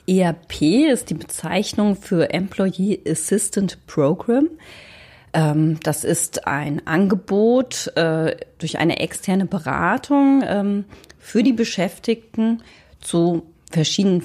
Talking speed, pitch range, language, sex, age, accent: 90 wpm, 160-200 Hz, German, female, 30-49, German